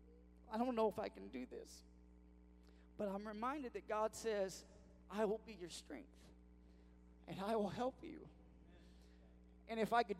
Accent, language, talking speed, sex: American, English, 165 wpm, male